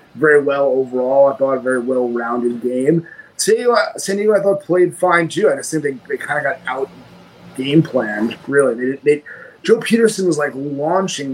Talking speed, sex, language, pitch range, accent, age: 195 wpm, male, English, 130-165 Hz, American, 30-49